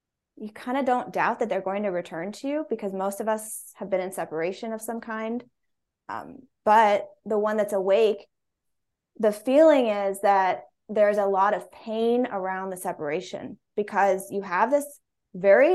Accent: American